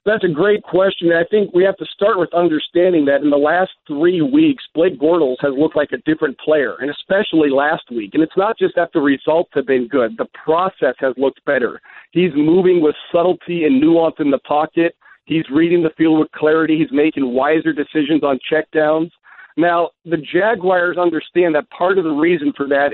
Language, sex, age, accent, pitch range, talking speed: English, male, 50-69, American, 150-180 Hz, 200 wpm